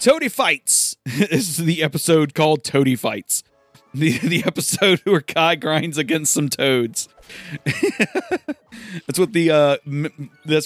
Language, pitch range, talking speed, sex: English, 125-160 Hz, 135 wpm, male